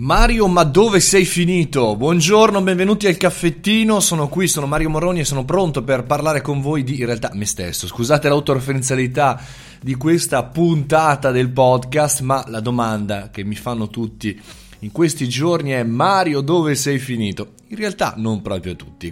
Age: 30-49